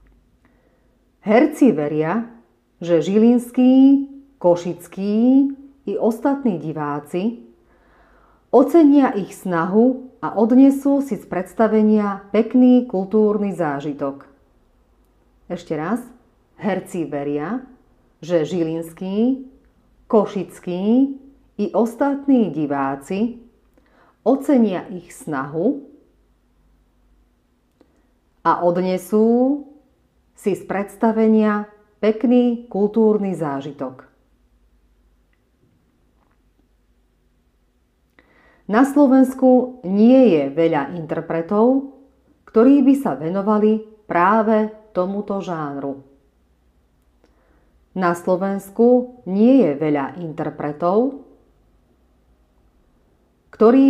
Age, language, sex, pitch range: 40-59, Slovak, female, 155-240 Hz